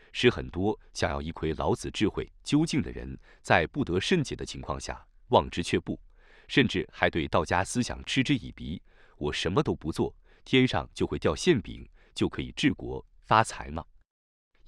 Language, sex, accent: Chinese, male, native